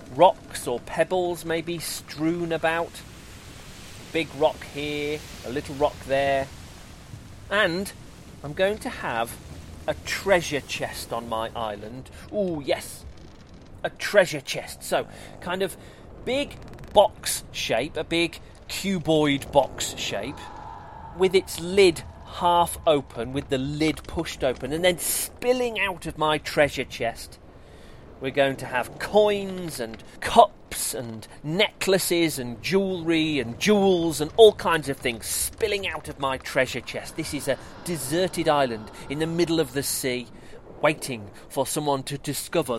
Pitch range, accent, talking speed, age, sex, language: 125-175 Hz, British, 135 wpm, 40-59, male, English